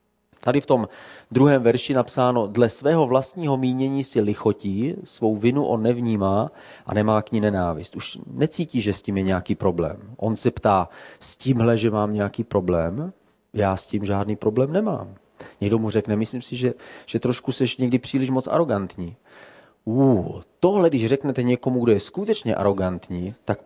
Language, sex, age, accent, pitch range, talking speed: Czech, male, 30-49, native, 105-130 Hz, 165 wpm